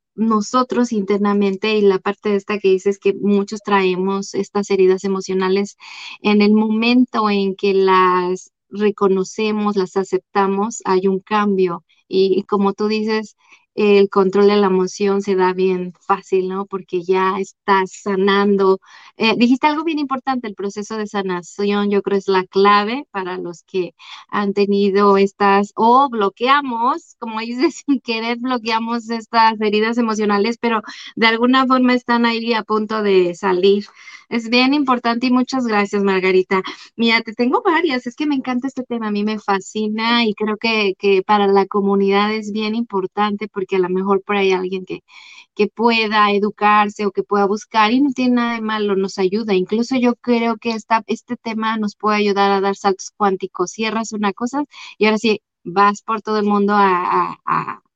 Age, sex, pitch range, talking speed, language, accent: 30-49, female, 195-230 Hz, 175 wpm, English, Mexican